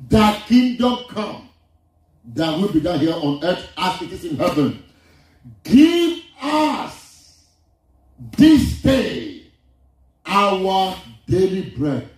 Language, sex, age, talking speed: English, male, 50-69, 110 wpm